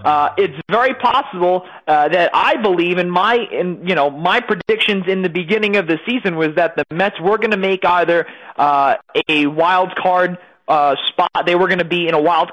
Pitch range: 145-190 Hz